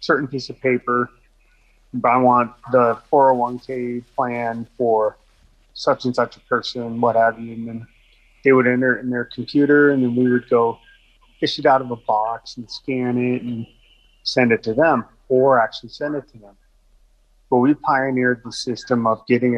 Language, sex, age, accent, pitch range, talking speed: English, male, 30-49, American, 115-130 Hz, 185 wpm